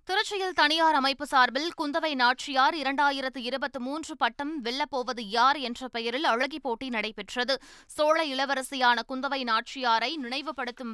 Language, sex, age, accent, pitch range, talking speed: Tamil, female, 20-39, native, 240-285 Hz, 105 wpm